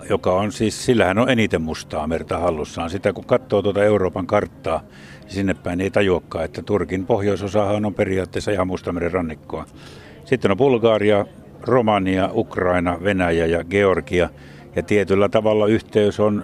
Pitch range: 95-105 Hz